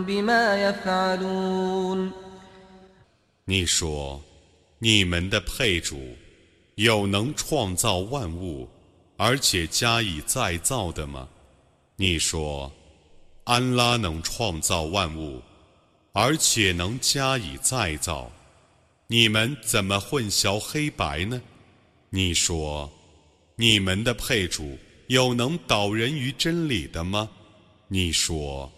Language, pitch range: Arabic, 85-120 Hz